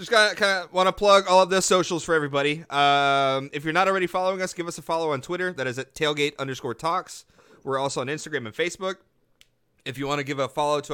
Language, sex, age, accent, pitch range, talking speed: English, male, 30-49, American, 135-165 Hz, 245 wpm